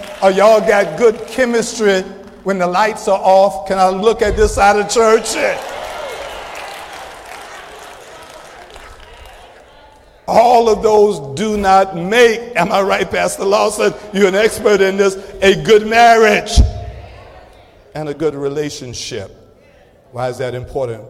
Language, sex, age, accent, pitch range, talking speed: English, male, 50-69, American, 125-210 Hz, 130 wpm